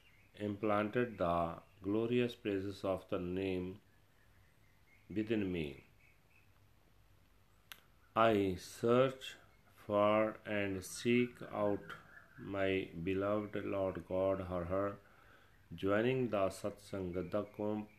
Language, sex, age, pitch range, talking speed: Punjabi, male, 40-59, 95-110 Hz, 85 wpm